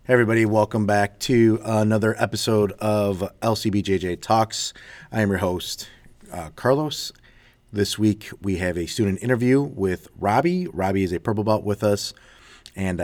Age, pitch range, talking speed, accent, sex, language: 30-49, 85-105 Hz, 150 wpm, American, male, English